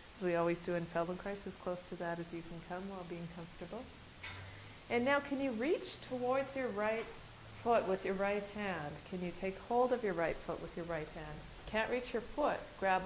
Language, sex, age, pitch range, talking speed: English, female, 40-59, 175-205 Hz, 215 wpm